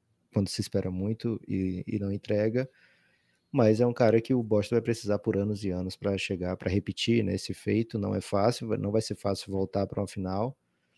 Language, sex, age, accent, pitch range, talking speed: Portuguese, male, 20-39, Brazilian, 95-115 Hz, 215 wpm